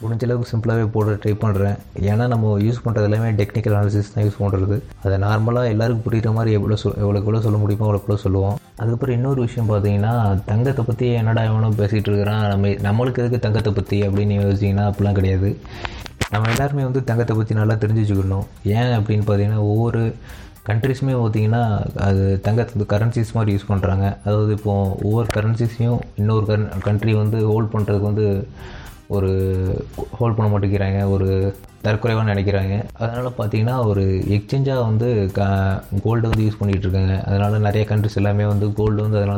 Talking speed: 155 wpm